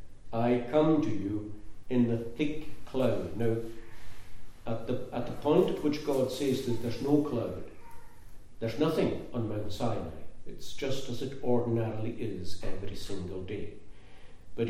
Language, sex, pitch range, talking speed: English, male, 100-130 Hz, 150 wpm